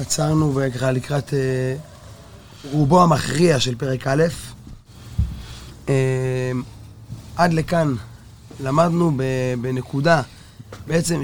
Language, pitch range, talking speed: Hebrew, 125-155 Hz, 70 wpm